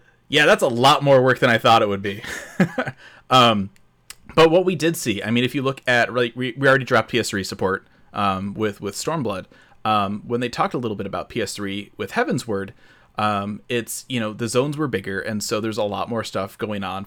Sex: male